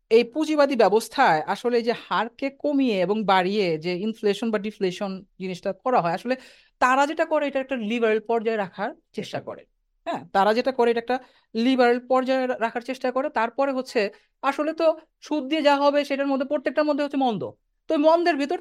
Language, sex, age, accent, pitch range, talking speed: Bengali, female, 50-69, native, 195-275 Hz, 175 wpm